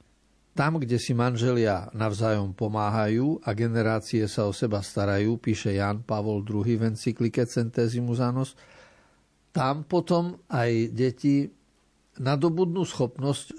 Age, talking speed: 50-69, 110 wpm